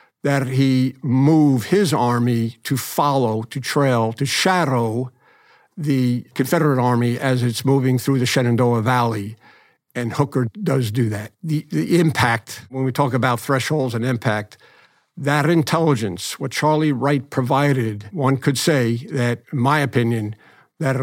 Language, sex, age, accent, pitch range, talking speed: English, male, 60-79, American, 120-145 Hz, 145 wpm